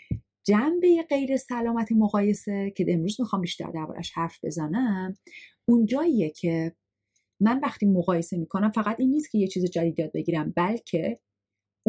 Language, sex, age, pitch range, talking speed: Persian, female, 30-49, 175-235 Hz, 140 wpm